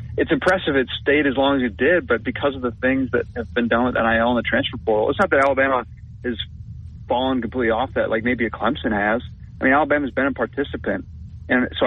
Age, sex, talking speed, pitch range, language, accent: 30-49, male, 235 wpm, 110-125 Hz, English, American